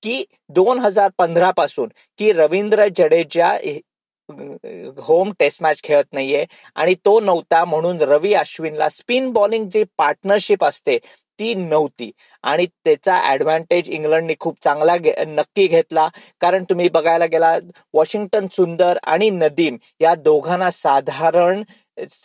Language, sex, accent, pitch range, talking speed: Marathi, male, native, 155-200 Hz, 125 wpm